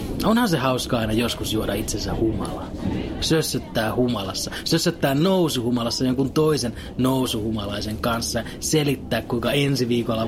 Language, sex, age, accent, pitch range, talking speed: Finnish, male, 30-49, native, 110-155 Hz, 115 wpm